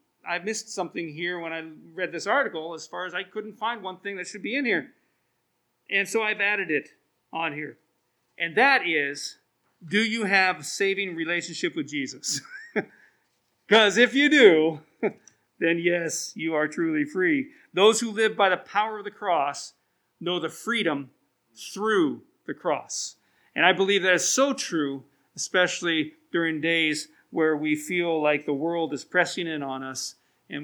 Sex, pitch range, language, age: male, 155-205 Hz, English, 40-59